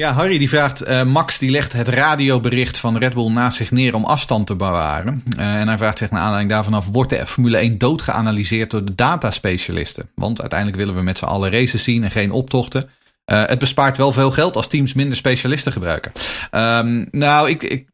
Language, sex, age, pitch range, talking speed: Dutch, male, 40-59, 105-130 Hz, 215 wpm